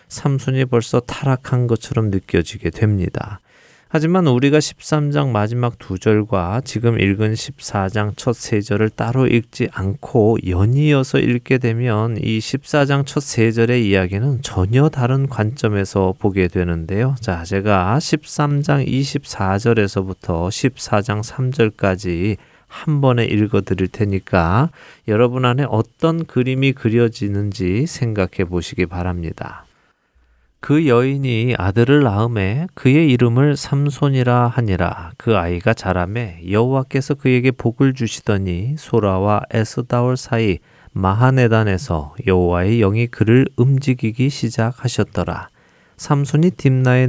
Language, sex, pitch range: Korean, male, 100-130 Hz